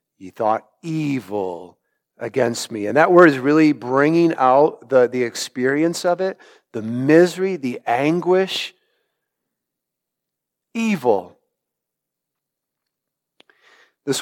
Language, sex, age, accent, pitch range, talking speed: English, male, 50-69, American, 125-155 Hz, 95 wpm